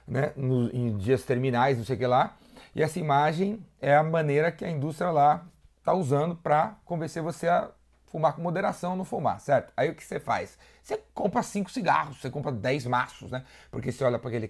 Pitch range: 120-160 Hz